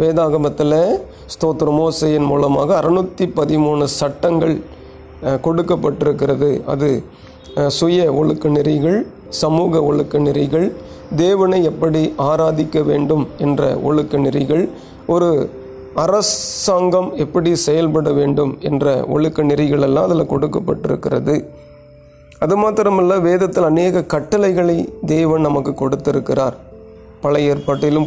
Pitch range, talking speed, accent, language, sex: 145-165 Hz, 85 wpm, native, Tamil, male